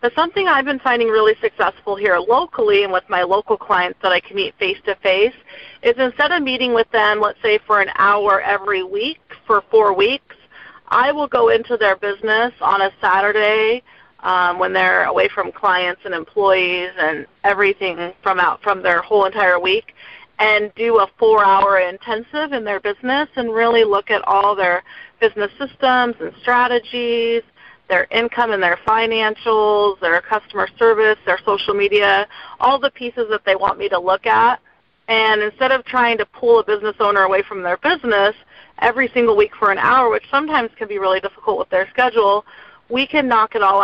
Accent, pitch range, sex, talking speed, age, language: American, 195-240 Hz, female, 185 wpm, 30-49, English